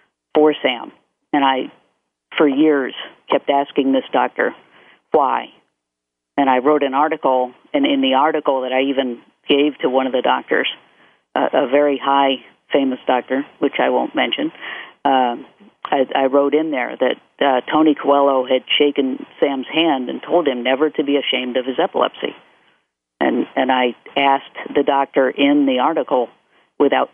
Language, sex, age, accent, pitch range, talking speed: English, female, 50-69, American, 125-150 Hz, 160 wpm